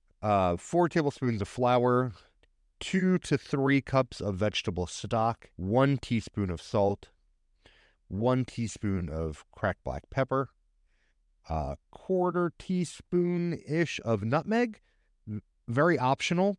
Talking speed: 105 wpm